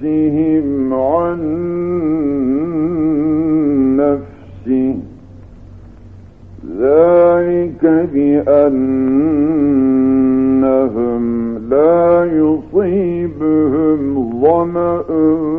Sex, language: male, Turkish